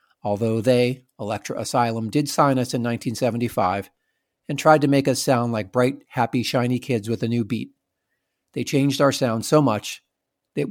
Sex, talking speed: male, 175 wpm